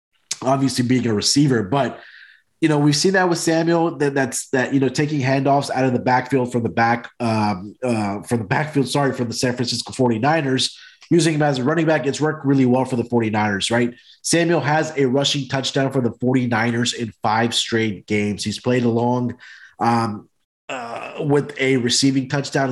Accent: American